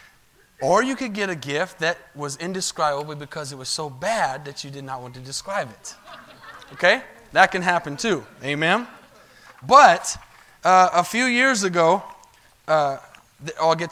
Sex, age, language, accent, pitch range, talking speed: male, 20-39, English, American, 155-200 Hz, 160 wpm